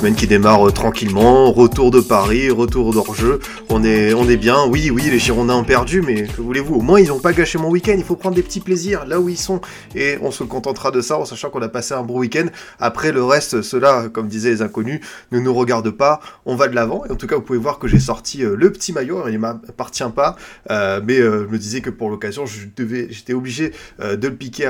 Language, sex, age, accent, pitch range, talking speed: French, male, 20-39, French, 115-145 Hz, 260 wpm